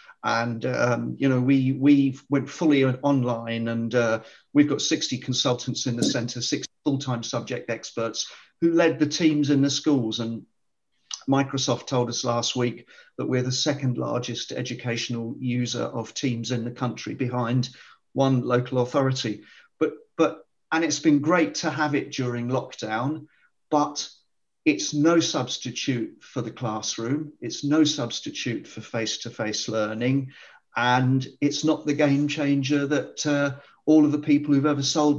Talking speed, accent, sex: 160 wpm, British, male